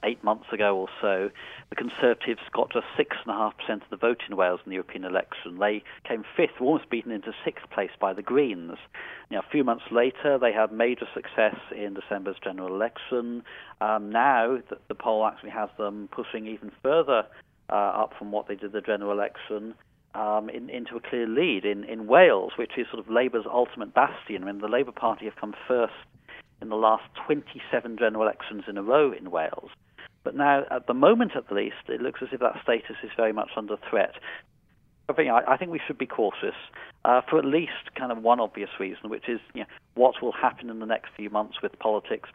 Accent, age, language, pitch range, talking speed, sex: British, 40-59, English, 105-120 Hz, 210 wpm, male